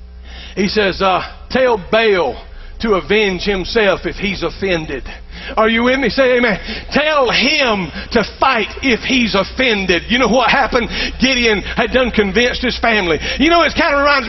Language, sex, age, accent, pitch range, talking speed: English, male, 50-69, American, 185-290 Hz, 170 wpm